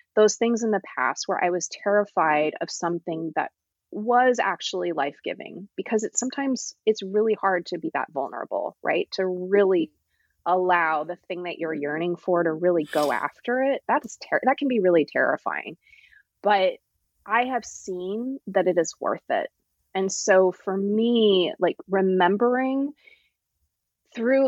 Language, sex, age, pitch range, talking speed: English, female, 20-39, 175-240 Hz, 155 wpm